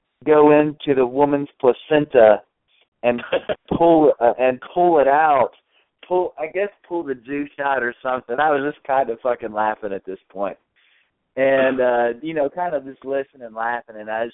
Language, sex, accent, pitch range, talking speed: English, male, American, 95-125 Hz, 185 wpm